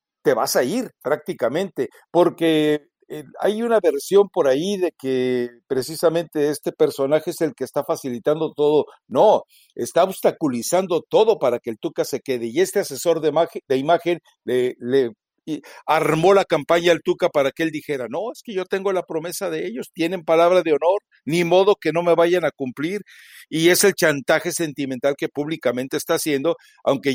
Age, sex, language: 60-79, male, Spanish